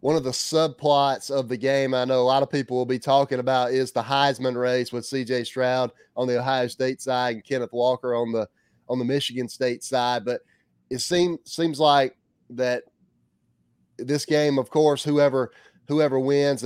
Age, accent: 30-49, American